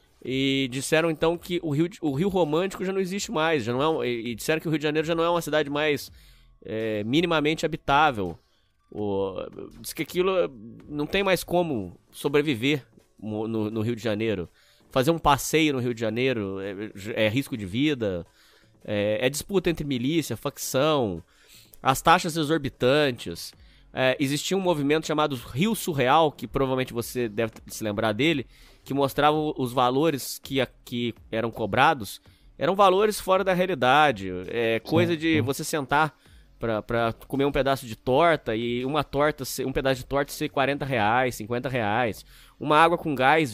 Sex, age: male, 20-39